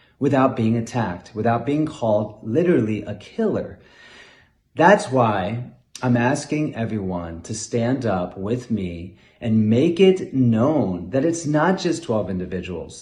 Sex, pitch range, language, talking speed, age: male, 105-140 Hz, English, 135 wpm, 30-49